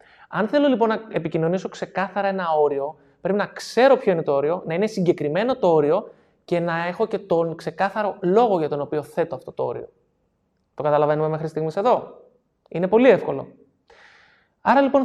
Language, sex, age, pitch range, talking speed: Greek, male, 20-39, 155-200 Hz, 175 wpm